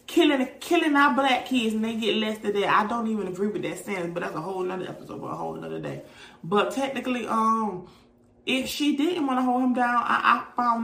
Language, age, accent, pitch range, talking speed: English, 30-49, American, 185-250 Hz, 235 wpm